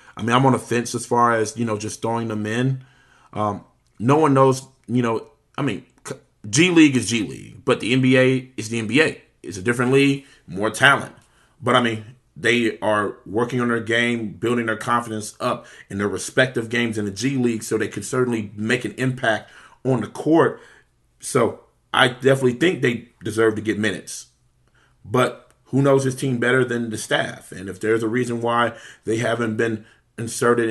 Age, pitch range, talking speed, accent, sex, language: 30-49, 110-125 Hz, 195 wpm, American, male, English